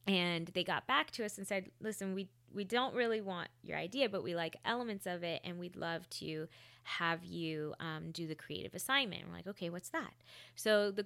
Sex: female